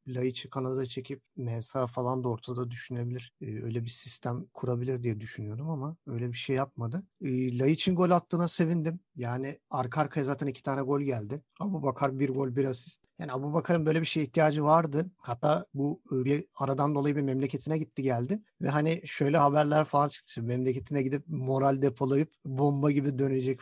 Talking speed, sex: 180 wpm, male